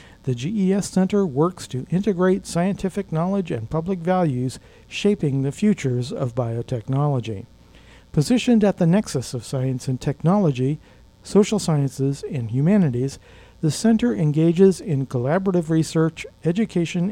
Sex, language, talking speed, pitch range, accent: male, English, 125 wpm, 130-185 Hz, American